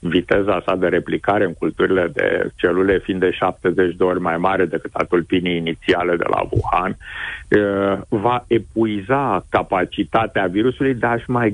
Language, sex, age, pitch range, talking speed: Romanian, male, 60-79, 100-115 Hz, 140 wpm